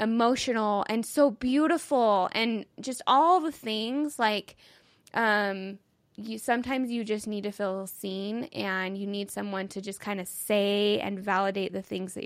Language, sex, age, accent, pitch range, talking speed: English, female, 10-29, American, 195-230 Hz, 160 wpm